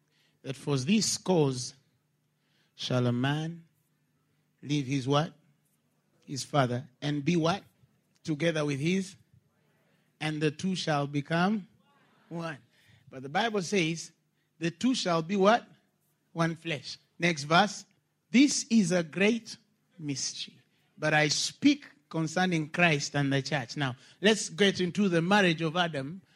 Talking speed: 130 wpm